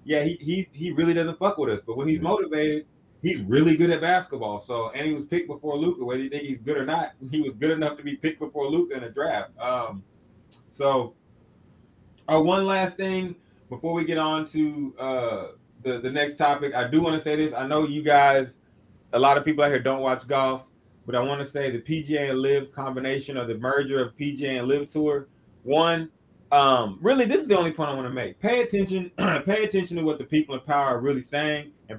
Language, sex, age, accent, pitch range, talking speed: English, male, 20-39, American, 130-155 Hz, 230 wpm